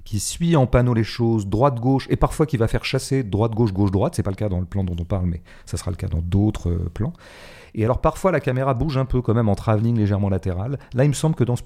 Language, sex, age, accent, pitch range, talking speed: French, male, 40-59, French, 100-135 Hz, 290 wpm